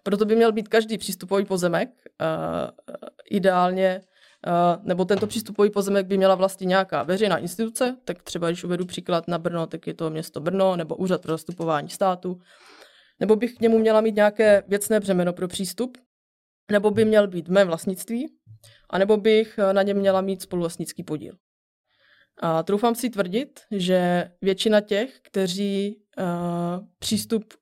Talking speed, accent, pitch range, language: 155 wpm, native, 175-205 Hz, Czech